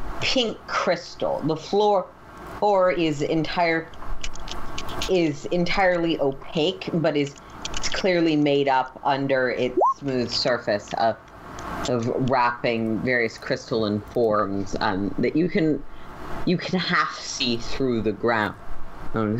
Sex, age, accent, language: female, 30-49, American, English